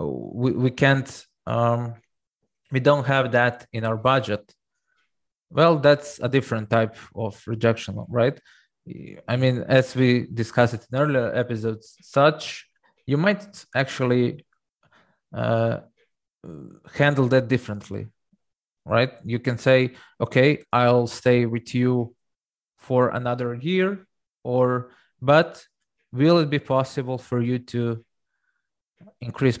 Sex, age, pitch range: male, 20-39, 115-135 Hz